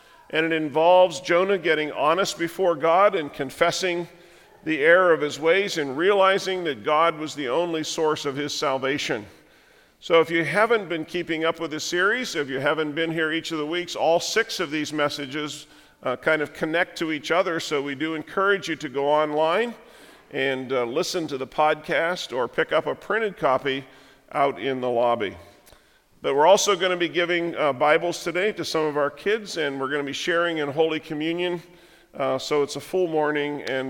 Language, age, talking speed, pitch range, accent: English, 50-69, 200 wpm, 140-175 Hz, American